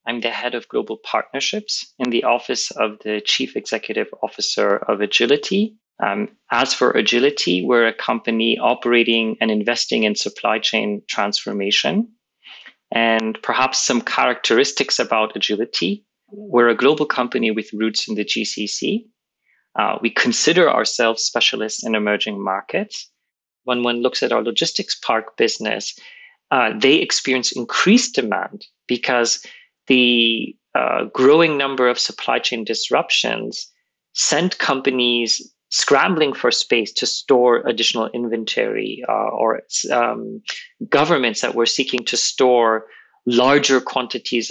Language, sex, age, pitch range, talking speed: English, male, 30-49, 115-140 Hz, 130 wpm